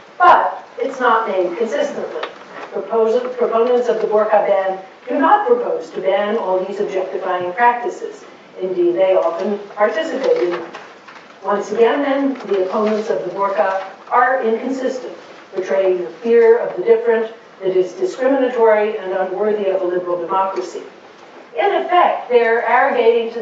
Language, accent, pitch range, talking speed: English, American, 190-250 Hz, 140 wpm